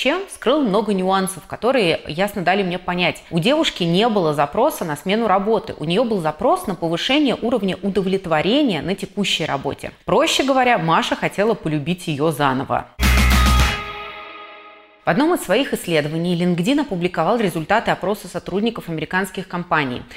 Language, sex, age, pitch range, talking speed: Russian, female, 30-49, 160-220 Hz, 135 wpm